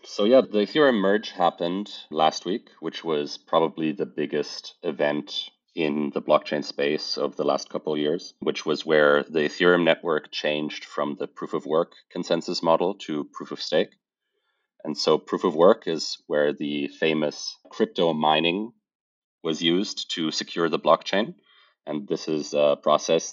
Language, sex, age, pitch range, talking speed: English, male, 30-49, 75-85 Hz, 165 wpm